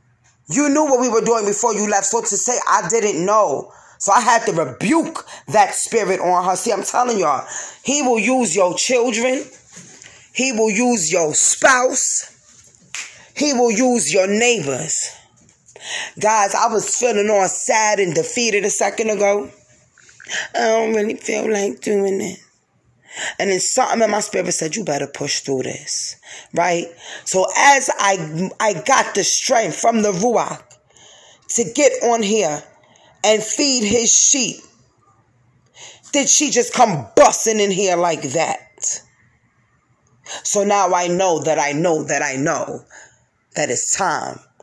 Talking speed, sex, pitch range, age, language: 155 wpm, female, 175-240 Hz, 20-39, English